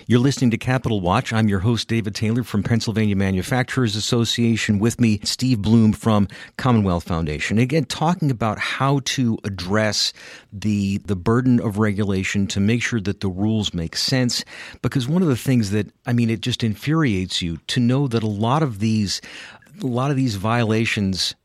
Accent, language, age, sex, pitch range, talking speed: American, English, 50-69, male, 110-135 Hz, 180 wpm